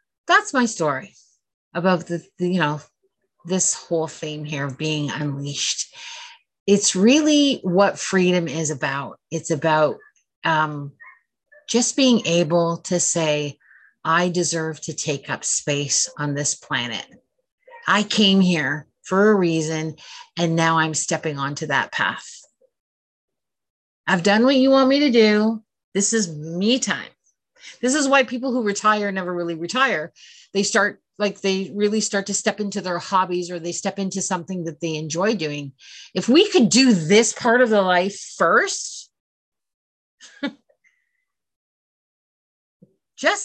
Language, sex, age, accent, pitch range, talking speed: English, female, 30-49, American, 165-250 Hz, 140 wpm